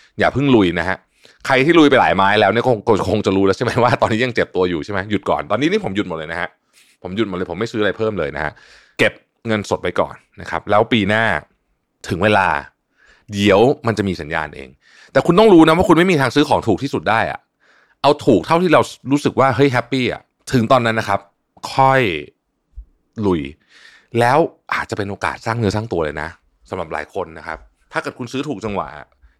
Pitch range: 100-140 Hz